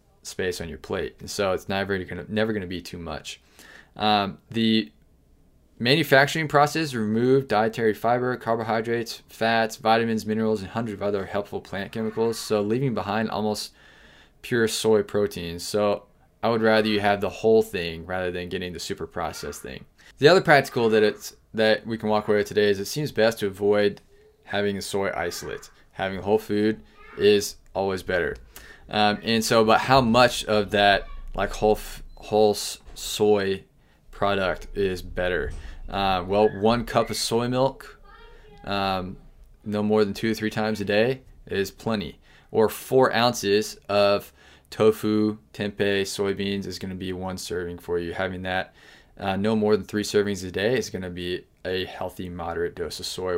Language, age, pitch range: English, 20-39, 95-110 Hz